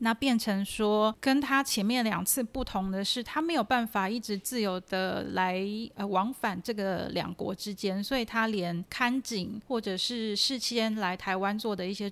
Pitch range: 185-225 Hz